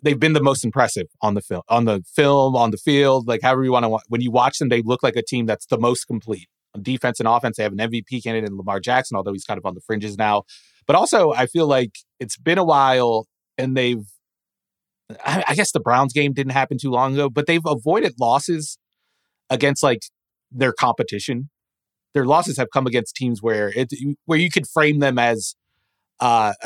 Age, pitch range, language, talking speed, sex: 30-49, 115-140 Hz, English, 220 wpm, male